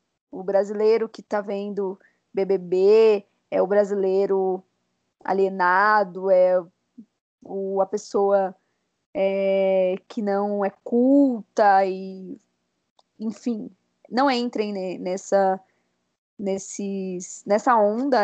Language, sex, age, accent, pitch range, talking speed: Portuguese, female, 20-39, Brazilian, 190-220 Hz, 85 wpm